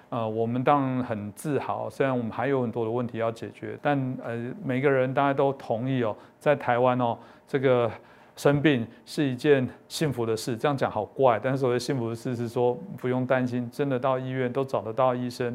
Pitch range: 115-135 Hz